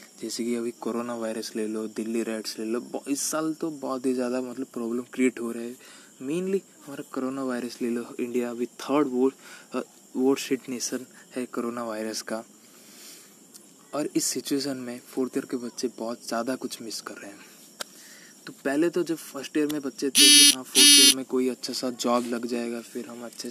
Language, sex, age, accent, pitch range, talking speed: Hindi, male, 20-39, native, 120-135 Hz, 195 wpm